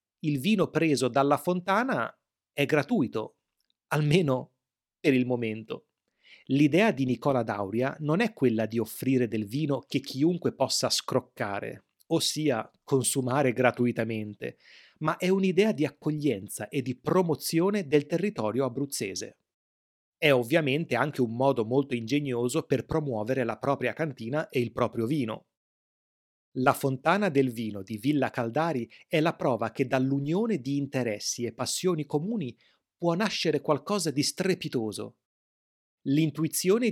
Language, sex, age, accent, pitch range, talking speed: Italian, male, 30-49, native, 120-155 Hz, 130 wpm